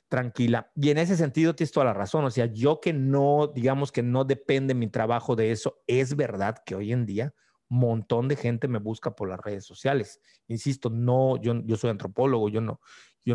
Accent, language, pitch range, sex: Mexican, Spanish, 115-140 Hz, male